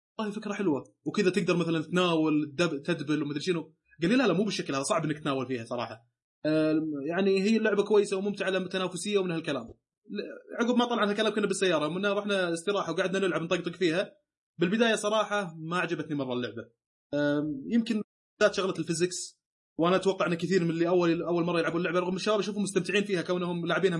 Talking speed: 180 wpm